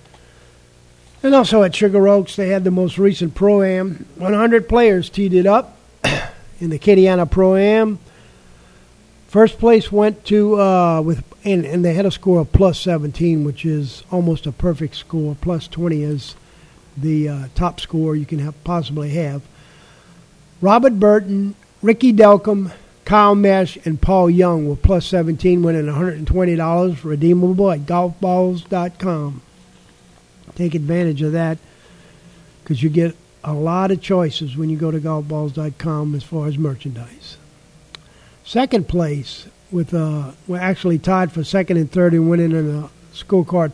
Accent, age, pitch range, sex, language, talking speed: American, 50-69, 155-190 Hz, male, English, 145 wpm